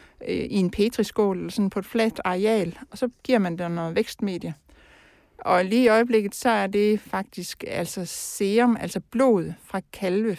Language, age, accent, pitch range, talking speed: Danish, 60-79, native, 185-225 Hz, 175 wpm